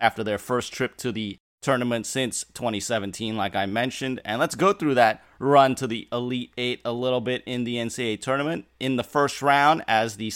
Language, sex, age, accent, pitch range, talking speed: English, male, 30-49, American, 115-135 Hz, 205 wpm